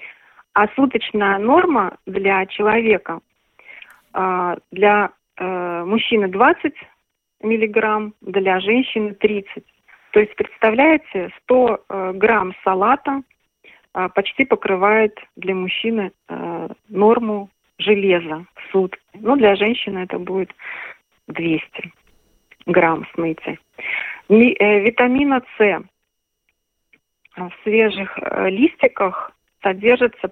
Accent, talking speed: native, 75 wpm